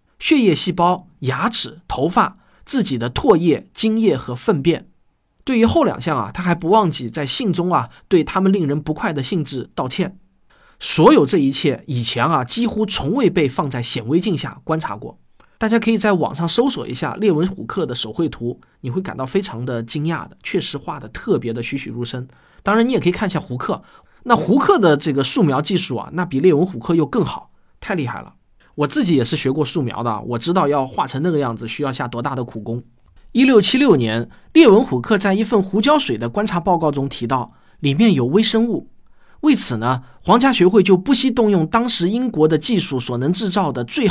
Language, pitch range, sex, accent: Chinese, 130-205 Hz, male, native